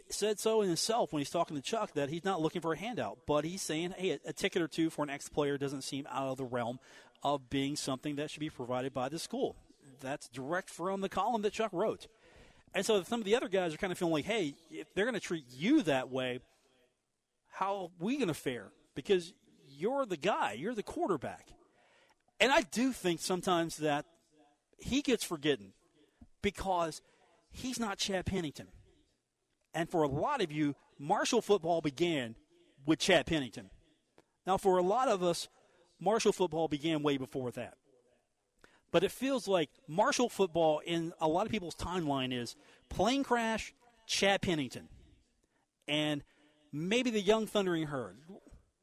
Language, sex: English, male